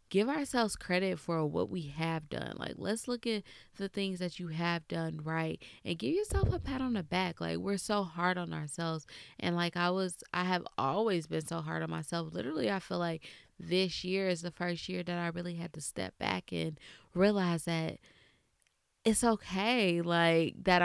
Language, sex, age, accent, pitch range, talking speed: English, female, 20-39, American, 165-195 Hz, 200 wpm